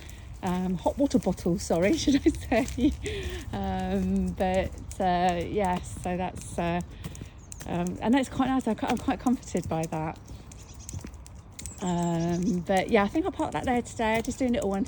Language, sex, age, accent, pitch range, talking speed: English, female, 30-49, British, 160-220 Hz, 170 wpm